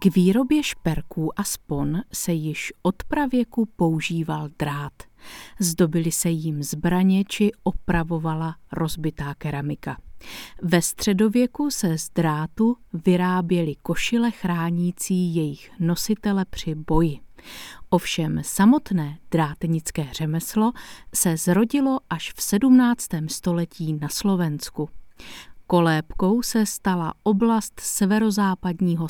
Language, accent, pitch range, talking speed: Czech, native, 160-205 Hz, 100 wpm